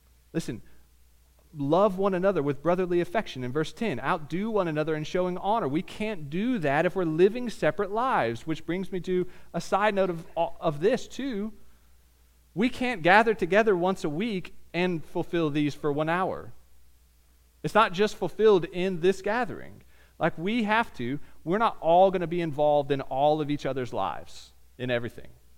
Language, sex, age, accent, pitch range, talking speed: English, male, 40-59, American, 120-175 Hz, 175 wpm